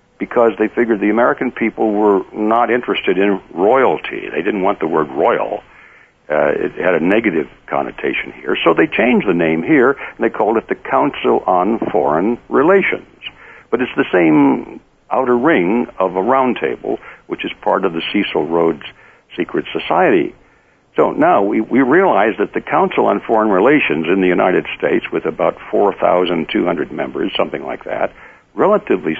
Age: 60-79